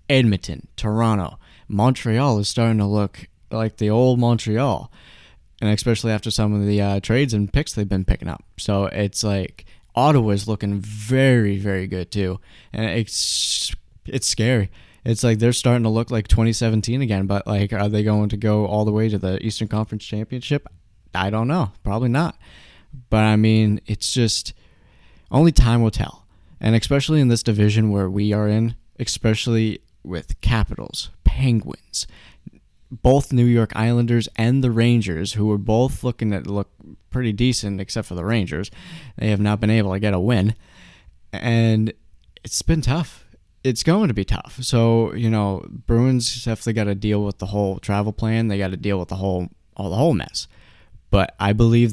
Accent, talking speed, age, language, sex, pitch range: American, 175 wpm, 20-39, English, male, 100-115 Hz